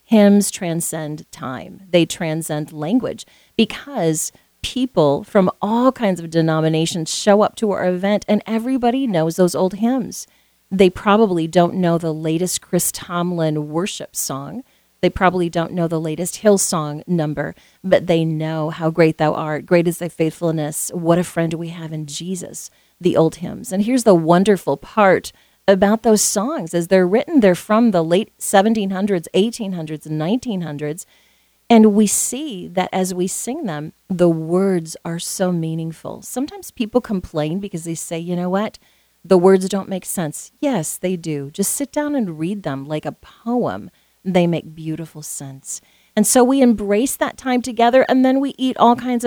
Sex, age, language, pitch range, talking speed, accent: female, 40-59, English, 165-215 Hz, 165 wpm, American